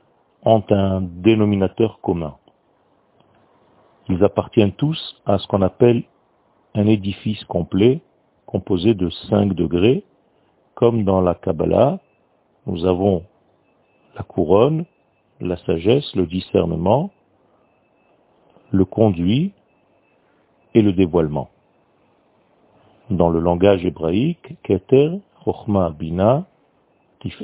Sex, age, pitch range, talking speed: male, 50-69, 90-115 Hz, 95 wpm